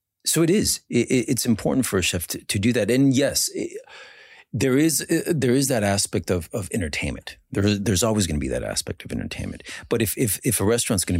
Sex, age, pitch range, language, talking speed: male, 40-59, 85-120 Hz, English, 230 wpm